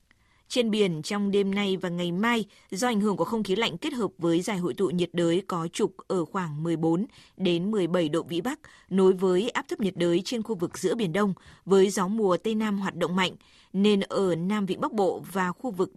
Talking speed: 225 wpm